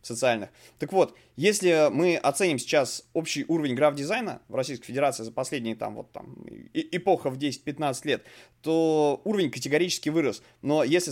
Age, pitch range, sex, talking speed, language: 20-39, 125-160 Hz, male, 155 wpm, Russian